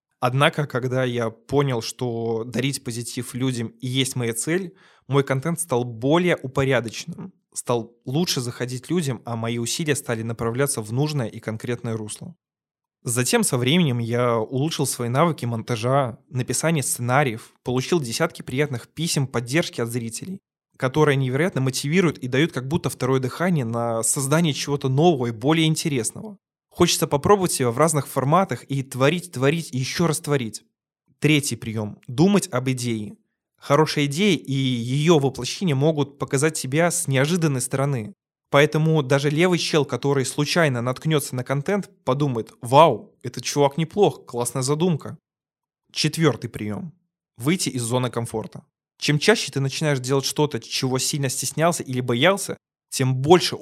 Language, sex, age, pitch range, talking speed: Russian, male, 20-39, 125-160 Hz, 140 wpm